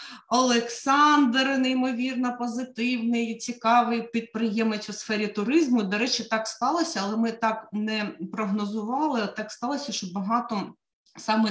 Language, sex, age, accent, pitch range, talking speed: Ukrainian, female, 30-49, native, 195-235 Hz, 120 wpm